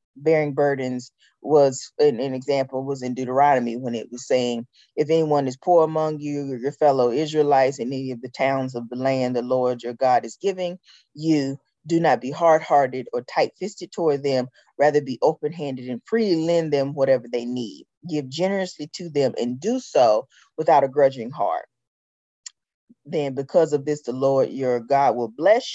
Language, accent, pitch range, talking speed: English, American, 130-170 Hz, 180 wpm